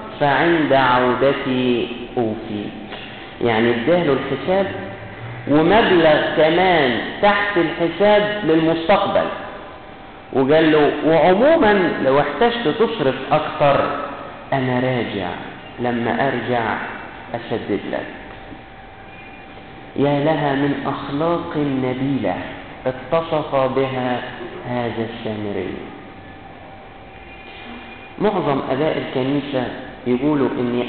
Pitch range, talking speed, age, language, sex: 125-155 Hz, 75 wpm, 50-69, Arabic, male